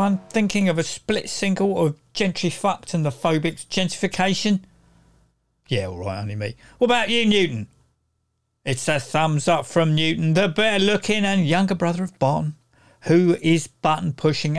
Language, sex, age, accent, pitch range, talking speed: English, male, 50-69, British, 135-205 Hz, 160 wpm